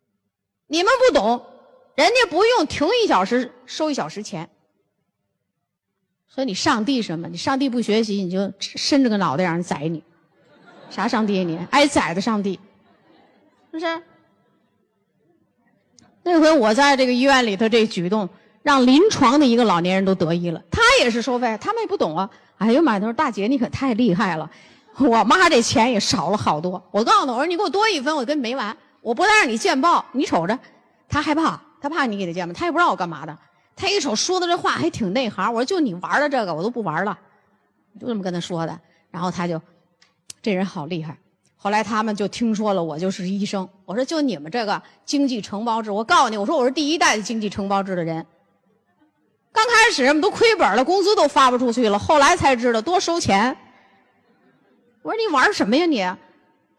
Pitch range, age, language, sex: 195-305 Hz, 30-49, Chinese, female